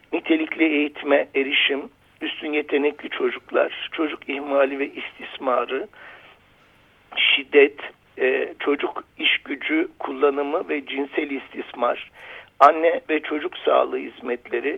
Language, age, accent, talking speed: Turkish, 60-79, native, 90 wpm